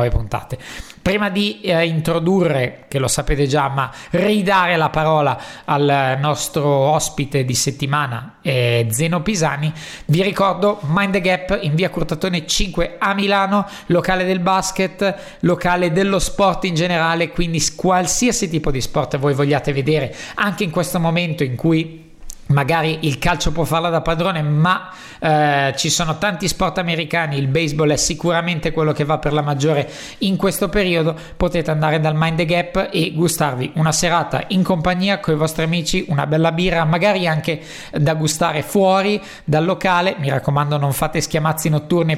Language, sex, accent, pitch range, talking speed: Italian, male, native, 150-185 Hz, 160 wpm